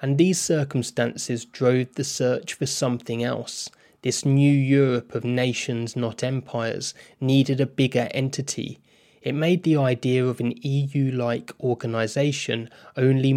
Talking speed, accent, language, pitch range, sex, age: 130 wpm, British, English, 120-135 Hz, male, 20-39